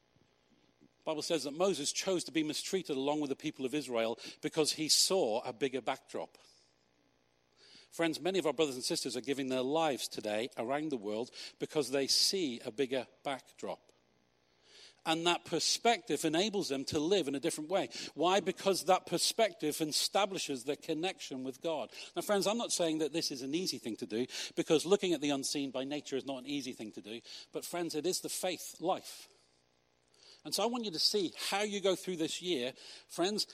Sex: male